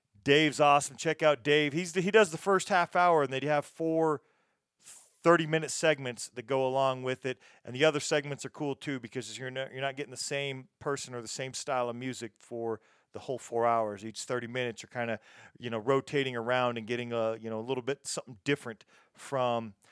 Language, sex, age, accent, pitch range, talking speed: English, male, 40-59, American, 125-150 Hz, 220 wpm